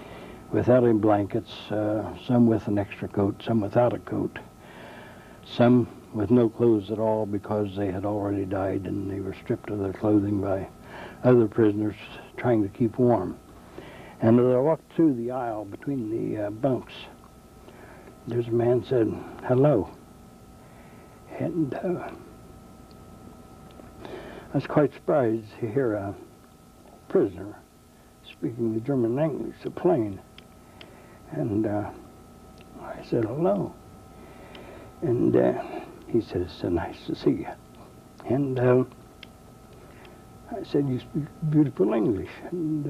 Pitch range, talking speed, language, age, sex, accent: 105-125 Hz, 135 wpm, English, 60-79, male, American